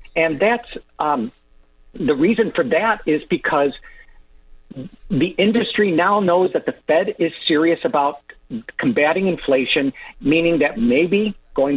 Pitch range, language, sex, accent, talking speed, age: 145-225 Hz, English, male, American, 125 wpm, 50-69